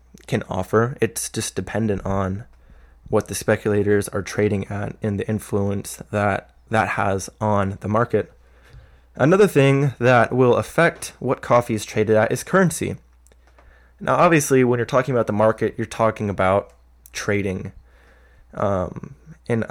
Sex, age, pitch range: male, 20-39, 95-125 Hz